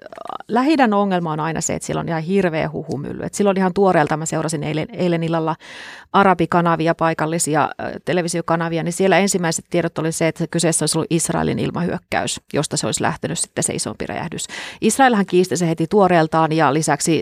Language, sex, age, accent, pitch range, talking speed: Finnish, female, 30-49, native, 155-185 Hz, 175 wpm